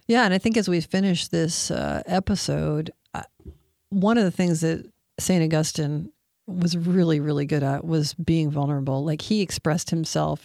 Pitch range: 150-180 Hz